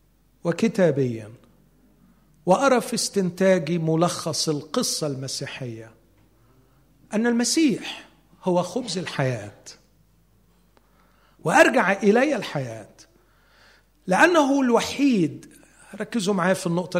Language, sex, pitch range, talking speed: Arabic, male, 135-210 Hz, 75 wpm